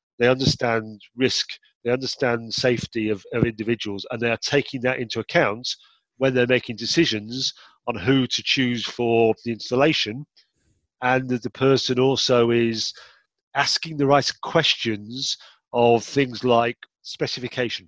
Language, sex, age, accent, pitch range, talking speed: English, male, 40-59, British, 115-135 Hz, 140 wpm